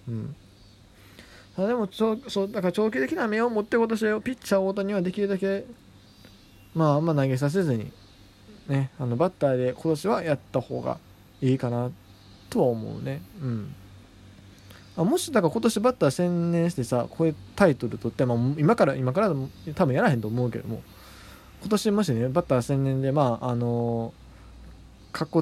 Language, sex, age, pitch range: Japanese, male, 20-39, 115-160 Hz